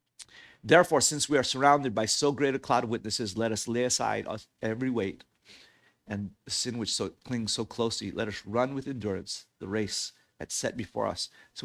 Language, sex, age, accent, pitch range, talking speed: English, male, 40-59, American, 115-145 Hz, 200 wpm